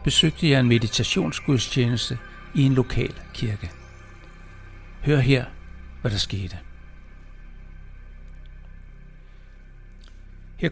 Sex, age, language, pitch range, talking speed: male, 60-79, Danish, 90-130 Hz, 80 wpm